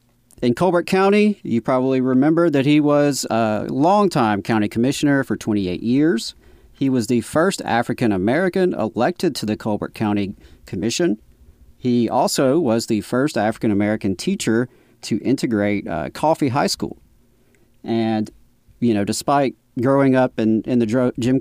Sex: male